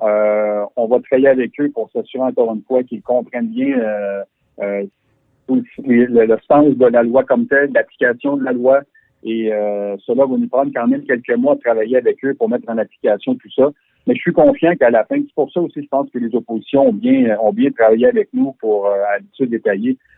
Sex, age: male, 50-69